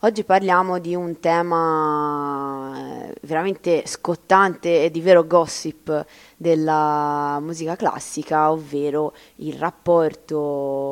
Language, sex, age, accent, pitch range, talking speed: Italian, female, 20-39, native, 150-170 Hz, 95 wpm